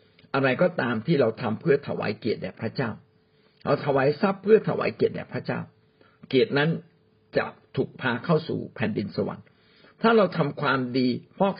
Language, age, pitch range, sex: Thai, 60-79, 120-175 Hz, male